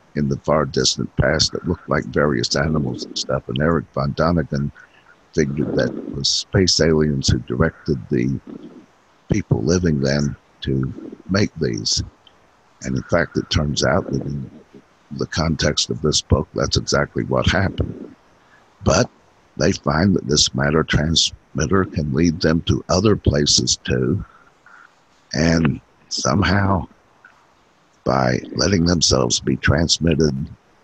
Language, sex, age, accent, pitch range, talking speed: English, male, 60-79, American, 70-85 Hz, 135 wpm